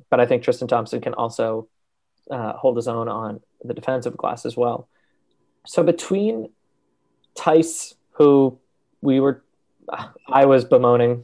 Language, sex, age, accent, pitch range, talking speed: English, male, 20-39, American, 120-145 Hz, 140 wpm